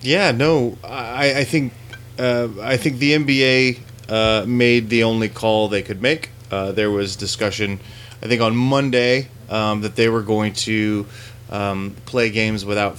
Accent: American